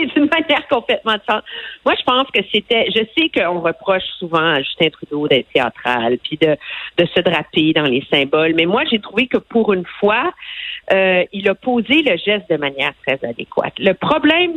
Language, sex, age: French, female, 50-69